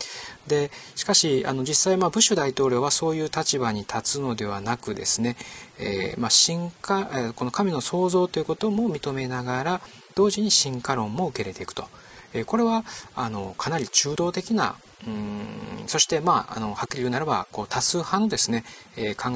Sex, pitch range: male, 115-190 Hz